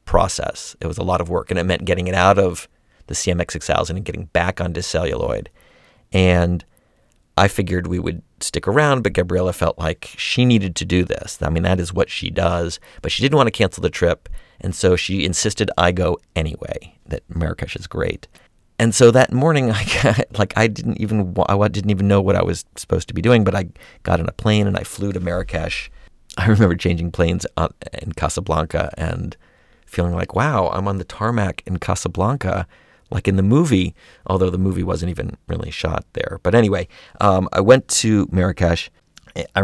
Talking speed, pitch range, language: 195 wpm, 90-105 Hz, English